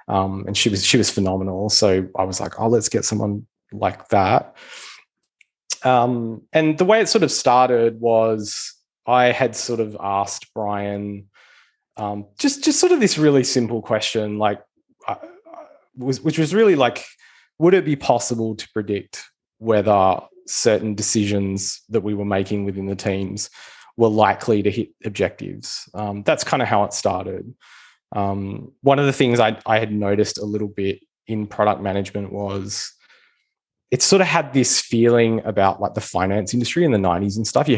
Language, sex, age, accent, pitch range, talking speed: English, male, 20-39, Australian, 100-120 Hz, 170 wpm